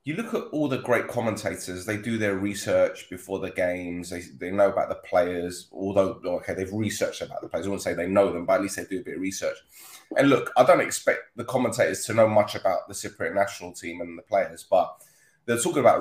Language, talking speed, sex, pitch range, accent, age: English, 240 wpm, male, 95-130 Hz, British, 20-39